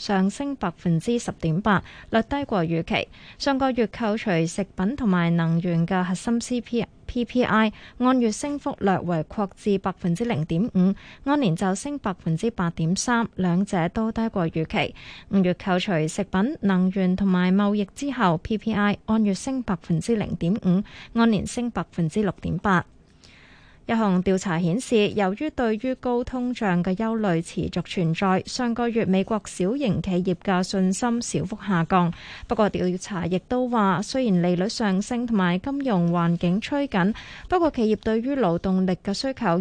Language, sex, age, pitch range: Chinese, female, 20-39, 180-230 Hz